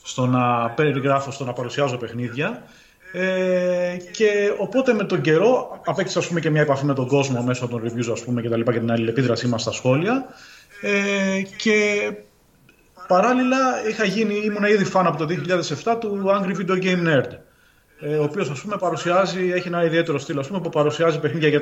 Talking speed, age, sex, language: 185 wpm, 30-49, male, Greek